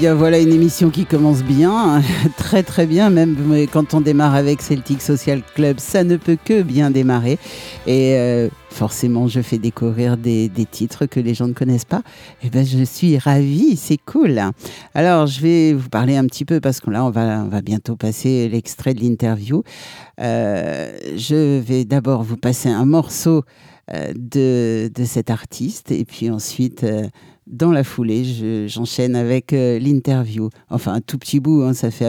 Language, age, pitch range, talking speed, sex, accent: French, 60-79, 125-155 Hz, 185 wpm, male, French